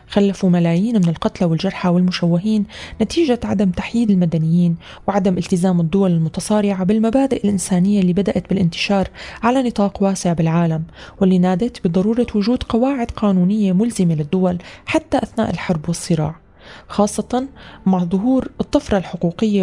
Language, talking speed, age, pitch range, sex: Arabic, 120 wpm, 20-39, 175-210 Hz, female